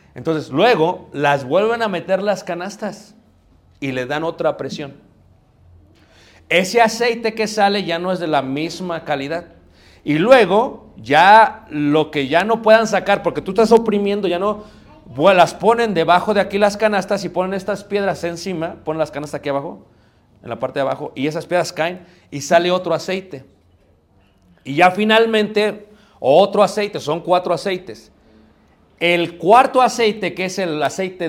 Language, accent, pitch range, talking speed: Spanish, Mexican, 135-190 Hz, 165 wpm